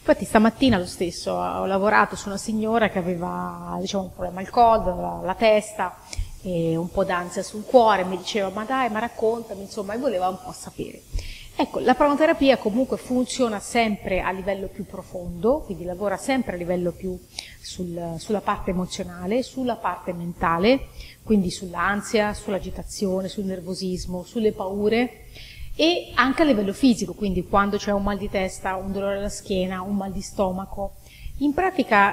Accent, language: native, Italian